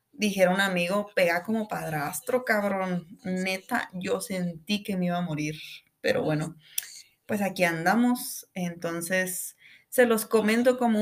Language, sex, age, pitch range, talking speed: Spanish, female, 20-39, 180-225 Hz, 135 wpm